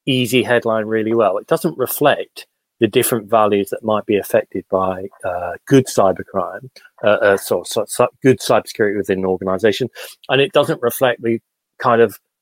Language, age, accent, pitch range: English, 40-59, British, 105-125 Hz